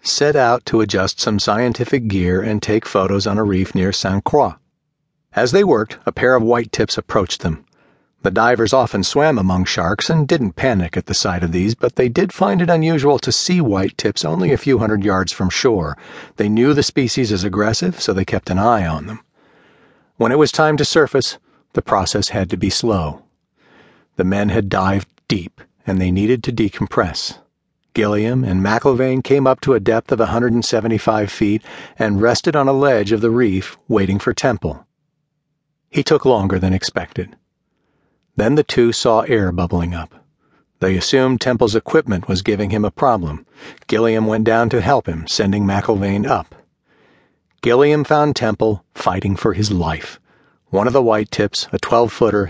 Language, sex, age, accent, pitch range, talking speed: English, male, 50-69, American, 95-130 Hz, 180 wpm